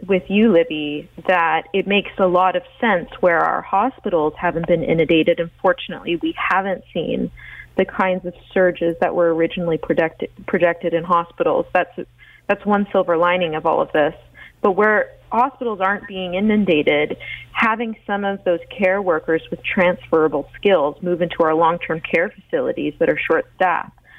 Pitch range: 170-205 Hz